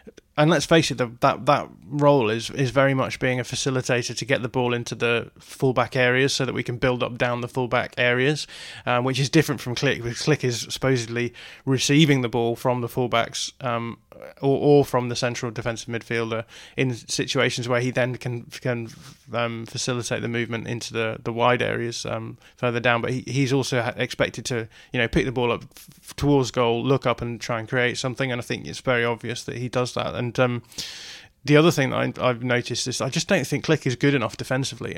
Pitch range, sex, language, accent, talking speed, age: 120-135 Hz, male, English, British, 215 wpm, 20-39